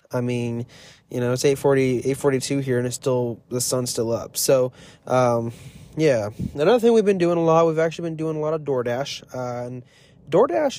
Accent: American